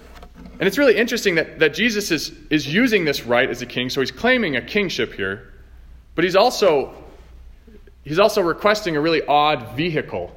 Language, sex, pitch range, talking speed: English, male, 125-180 Hz, 180 wpm